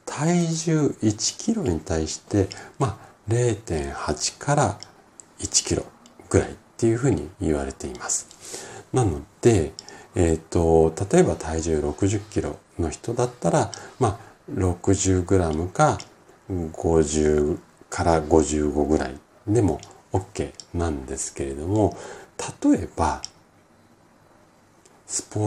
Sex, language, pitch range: male, Japanese, 80-120 Hz